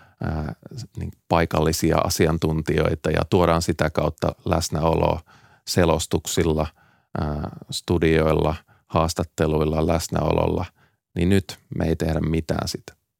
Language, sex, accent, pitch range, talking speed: Finnish, male, native, 80-100 Hz, 80 wpm